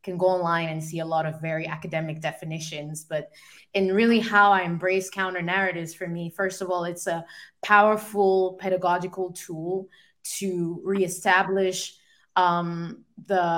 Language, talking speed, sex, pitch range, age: English, 140 wpm, female, 180-215 Hz, 20-39